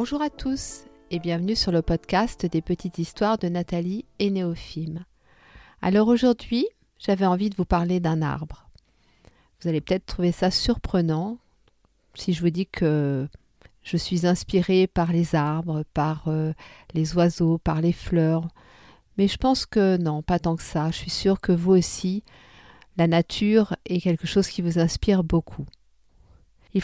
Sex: female